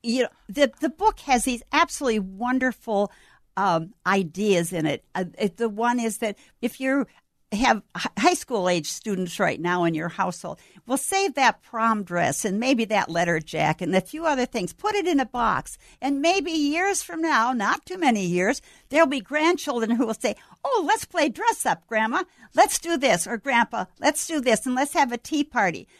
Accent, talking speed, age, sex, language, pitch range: American, 195 wpm, 60-79, female, English, 220-285 Hz